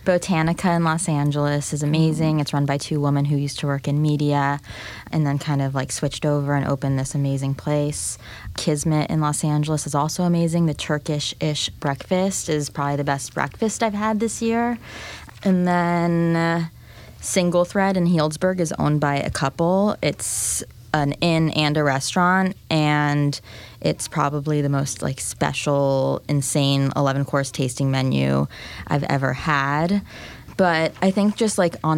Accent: American